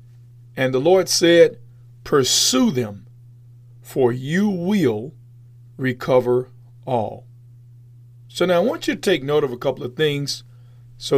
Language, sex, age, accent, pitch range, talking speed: English, male, 40-59, American, 120-140 Hz, 135 wpm